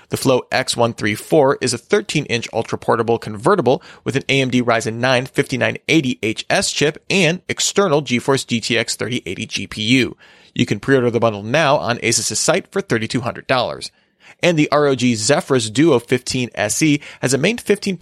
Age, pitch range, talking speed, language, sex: 30-49, 115-150 Hz, 140 wpm, English, male